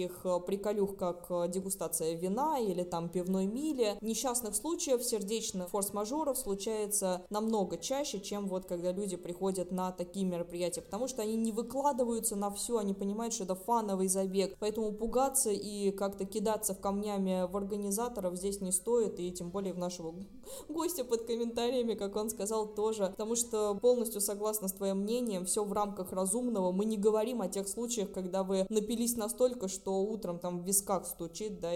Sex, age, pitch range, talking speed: female, 20-39, 185-225 Hz, 165 wpm